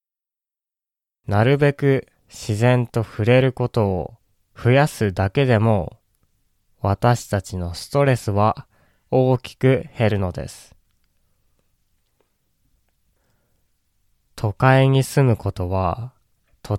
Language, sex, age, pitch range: Japanese, male, 20-39, 95-125 Hz